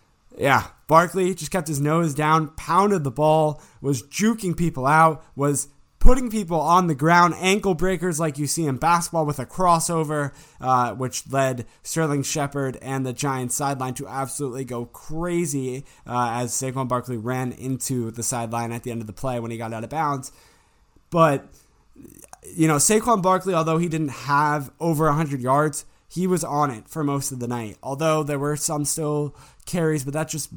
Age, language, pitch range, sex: 20-39, English, 130-165 Hz, male